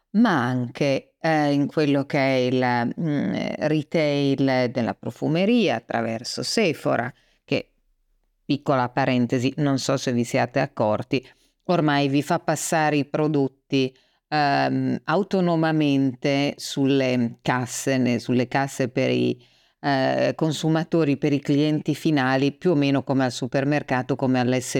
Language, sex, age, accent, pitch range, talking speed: Italian, female, 40-59, native, 125-150 Hz, 120 wpm